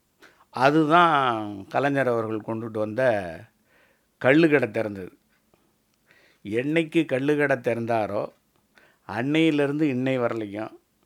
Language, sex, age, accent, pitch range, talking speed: Tamil, male, 50-69, native, 110-135 Hz, 80 wpm